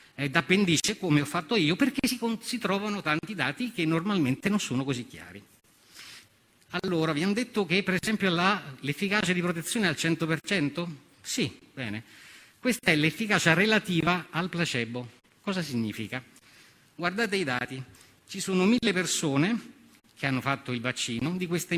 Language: Italian